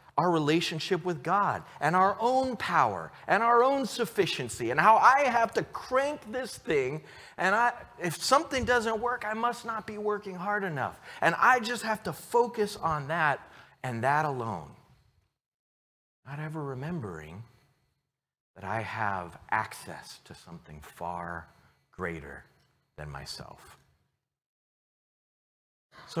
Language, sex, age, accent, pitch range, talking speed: English, male, 40-59, American, 115-190 Hz, 130 wpm